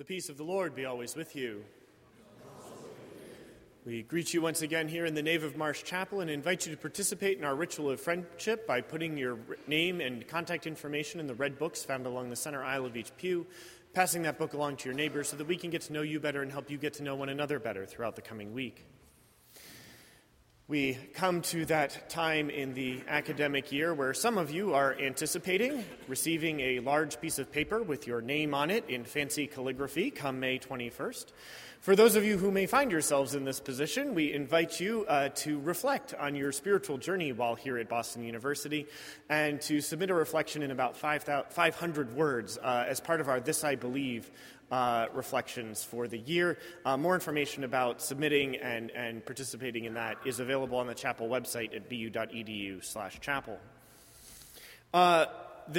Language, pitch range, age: English, 130-165 Hz, 30-49